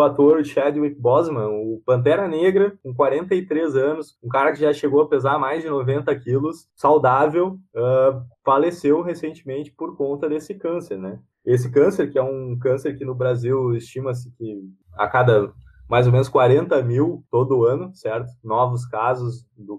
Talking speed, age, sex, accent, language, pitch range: 160 wpm, 20-39, male, Brazilian, Portuguese, 125-150 Hz